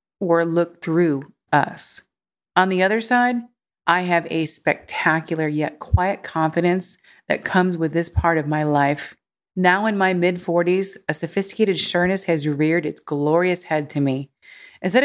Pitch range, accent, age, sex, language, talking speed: 150-200 Hz, American, 40-59, female, English, 155 wpm